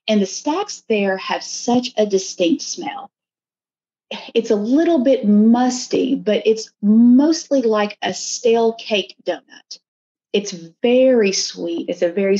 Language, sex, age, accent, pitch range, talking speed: English, female, 40-59, American, 185-240 Hz, 135 wpm